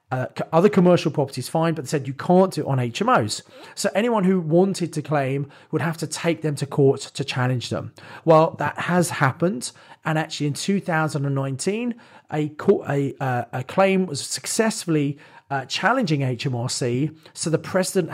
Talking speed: 170 wpm